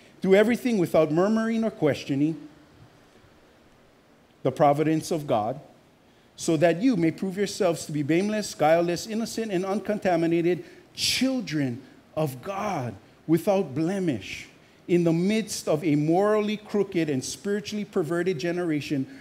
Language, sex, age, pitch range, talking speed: English, male, 50-69, 160-210 Hz, 120 wpm